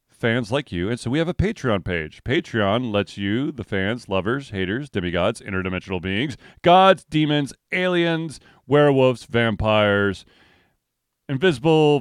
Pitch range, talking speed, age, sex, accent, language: 115-150 Hz, 130 wpm, 30-49, male, American, English